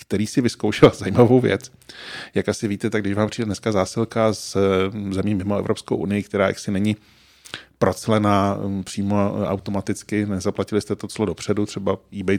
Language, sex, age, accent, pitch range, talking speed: Czech, male, 20-39, native, 95-110 Hz, 155 wpm